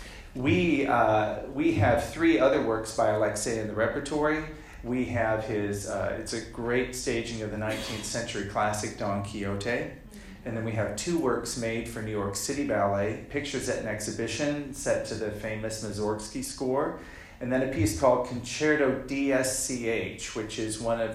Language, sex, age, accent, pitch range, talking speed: English, male, 40-59, American, 110-125 Hz, 170 wpm